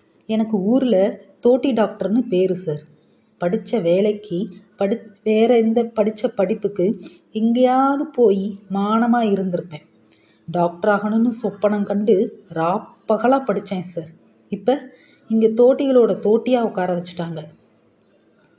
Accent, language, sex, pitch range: native, Tamil, female, 185-230 Hz